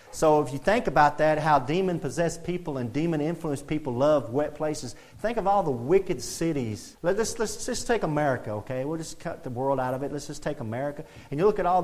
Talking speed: 225 wpm